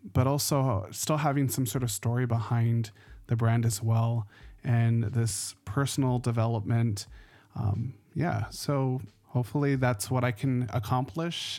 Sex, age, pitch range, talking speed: male, 20-39, 115-130 Hz, 135 wpm